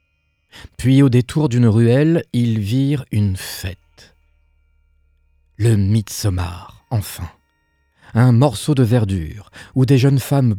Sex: male